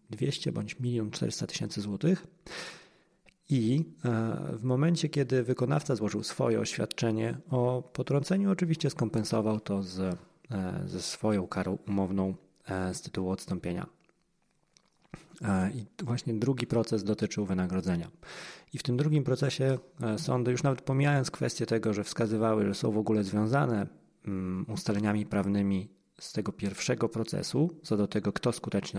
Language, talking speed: Polish, 130 wpm